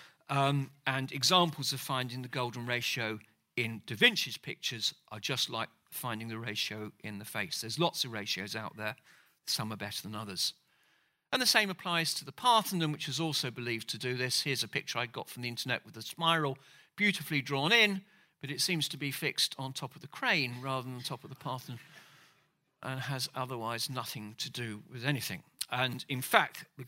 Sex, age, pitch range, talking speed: male, 50-69, 125-170 Hz, 200 wpm